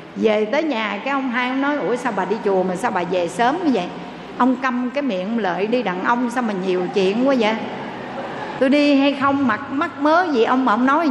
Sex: female